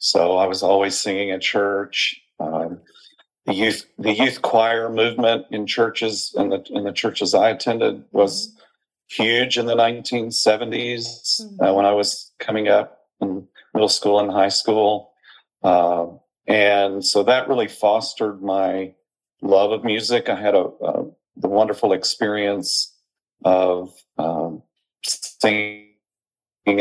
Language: English